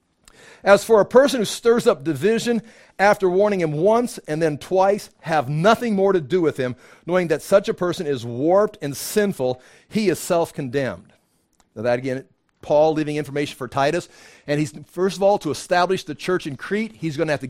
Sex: male